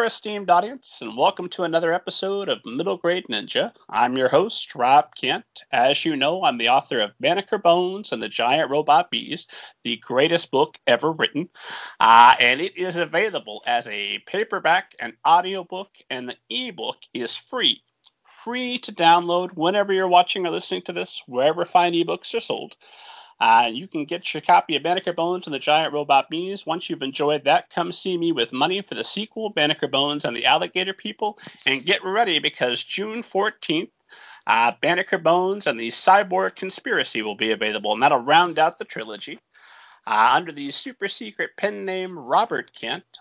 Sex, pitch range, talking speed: male, 150-215 Hz, 175 wpm